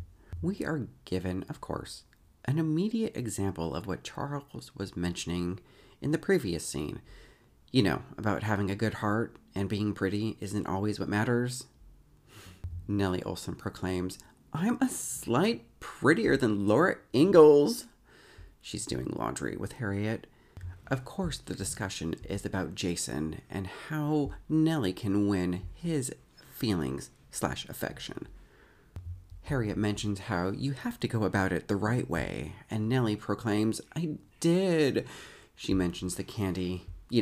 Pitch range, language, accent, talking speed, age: 90-125 Hz, English, American, 135 wpm, 40-59